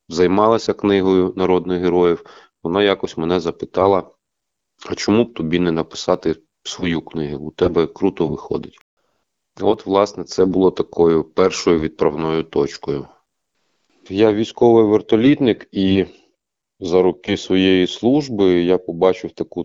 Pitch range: 80-100 Hz